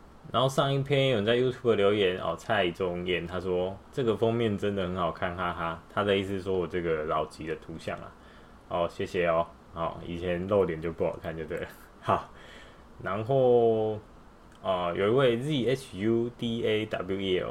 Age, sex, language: 20-39, male, Chinese